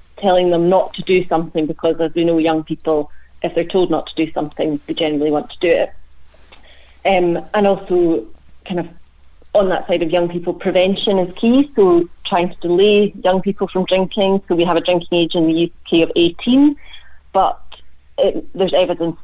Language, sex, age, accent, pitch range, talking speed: English, female, 30-49, British, 160-190 Hz, 195 wpm